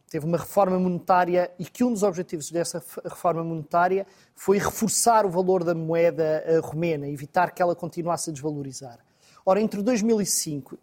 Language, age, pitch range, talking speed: Portuguese, 20-39, 165-205 Hz, 155 wpm